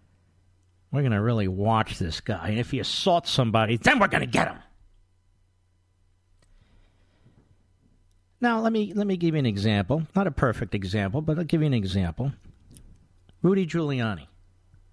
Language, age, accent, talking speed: English, 50-69, American, 155 wpm